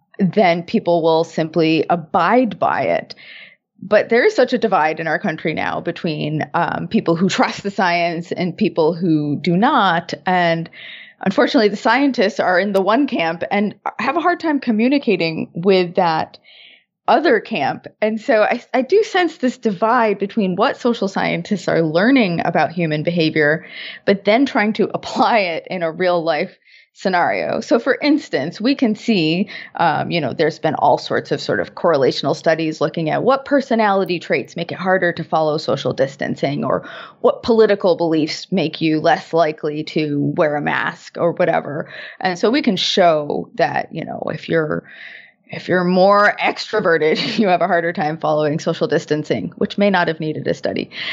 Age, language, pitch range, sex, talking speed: 20-39, English, 165-225 Hz, female, 175 wpm